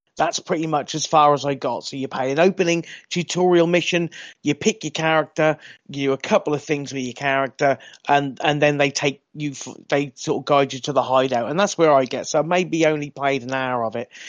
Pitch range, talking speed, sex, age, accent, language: 140-170 Hz, 235 wpm, male, 30-49, British, English